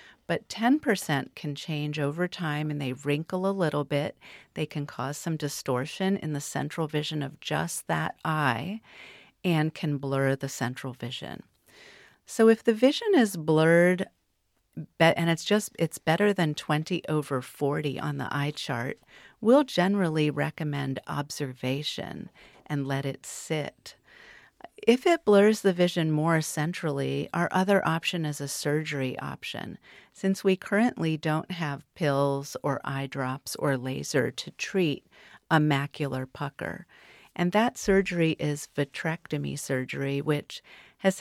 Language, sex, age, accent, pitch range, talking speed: English, female, 40-59, American, 140-180 Hz, 140 wpm